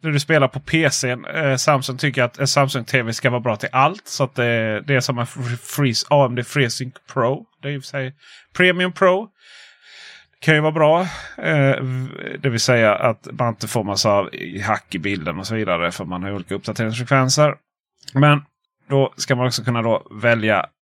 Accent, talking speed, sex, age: native, 200 wpm, male, 30-49